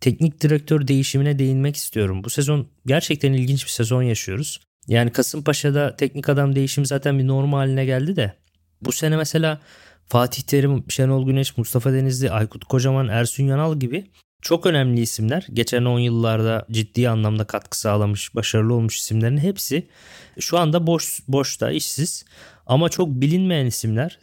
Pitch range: 115-150 Hz